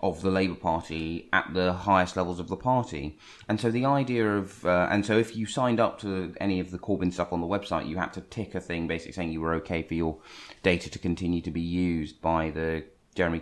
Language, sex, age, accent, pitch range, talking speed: English, male, 20-39, British, 85-110 Hz, 240 wpm